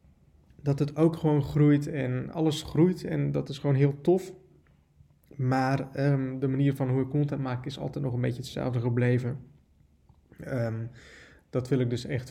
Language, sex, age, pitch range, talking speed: Dutch, male, 20-39, 125-155 Hz, 165 wpm